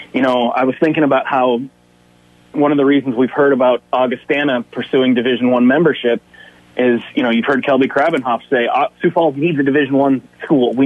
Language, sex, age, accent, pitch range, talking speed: English, male, 30-49, American, 120-140 Hz, 195 wpm